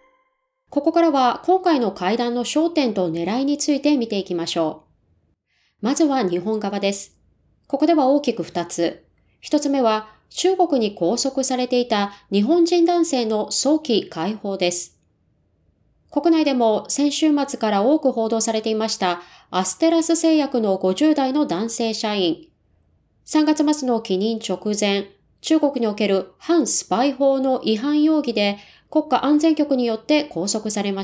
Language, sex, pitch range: Japanese, female, 195-285 Hz